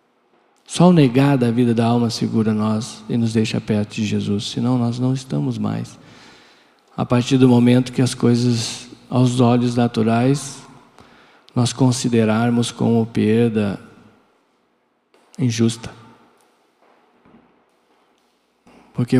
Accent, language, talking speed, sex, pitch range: Brazilian, Portuguese, 115 wpm, male, 120-140 Hz